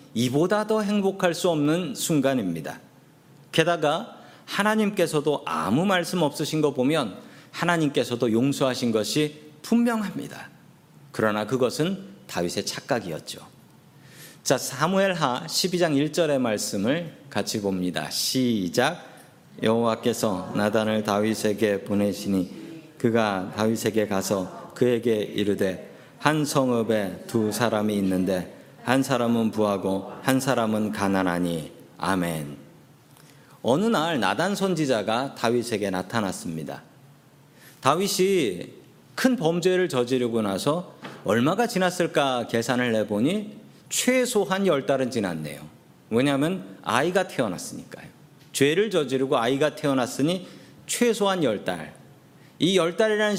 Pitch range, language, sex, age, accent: 110-170 Hz, Korean, male, 40-59, native